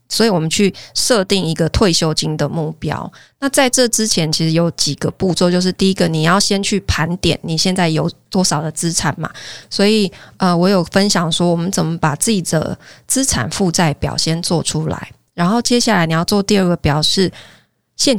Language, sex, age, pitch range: Chinese, female, 20-39, 160-200 Hz